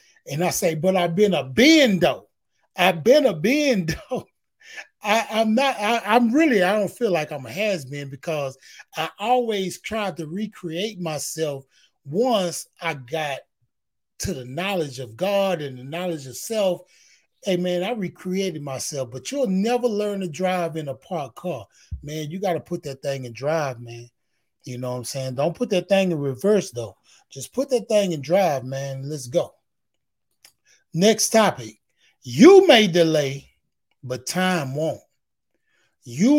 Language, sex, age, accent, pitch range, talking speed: English, male, 30-49, American, 140-215 Hz, 165 wpm